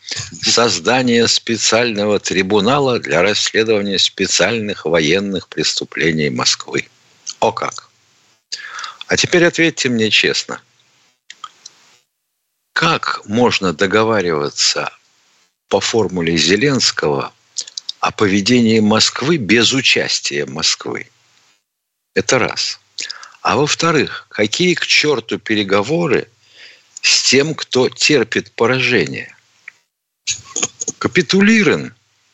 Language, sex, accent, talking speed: Russian, male, native, 80 wpm